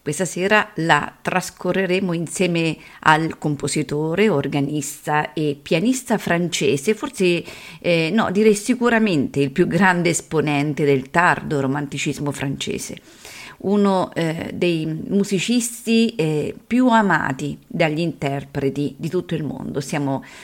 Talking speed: 110 wpm